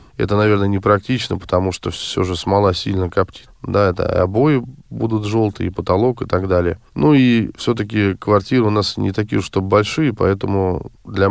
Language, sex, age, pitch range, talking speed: Russian, male, 20-39, 95-120 Hz, 170 wpm